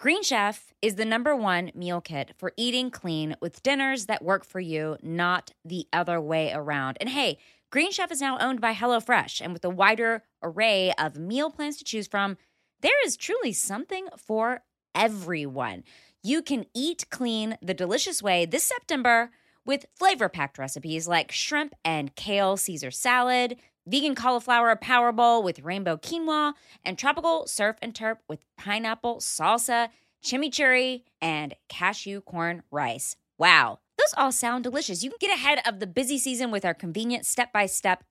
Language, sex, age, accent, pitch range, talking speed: English, female, 20-39, American, 175-255 Hz, 160 wpm